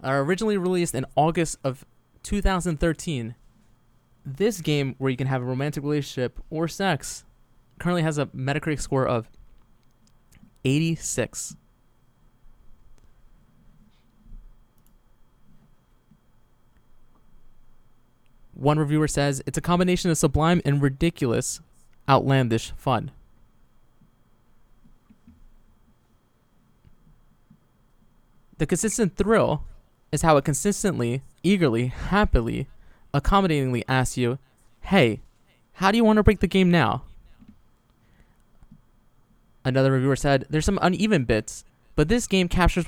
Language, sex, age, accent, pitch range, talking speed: English, male, 20-39, American, 125-170 Hz, 100 wpm